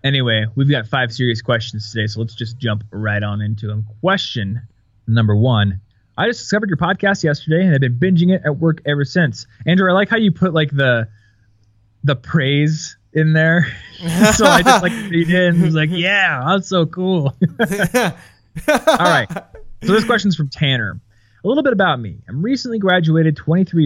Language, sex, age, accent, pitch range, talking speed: English, male, 20-39, American, 115-170 Hz, 190 wpm